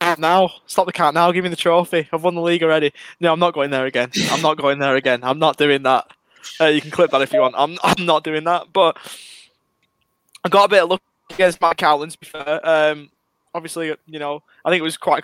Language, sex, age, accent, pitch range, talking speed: English, male, 20-39, British, 140-170 Hz, 245 wpm